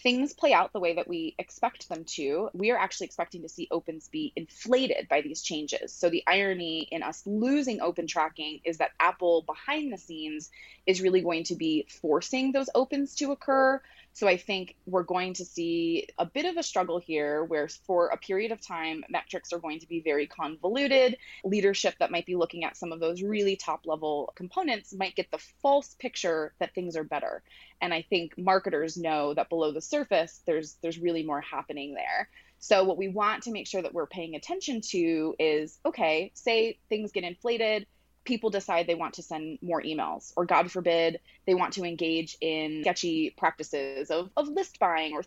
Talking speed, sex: 200 wpm, female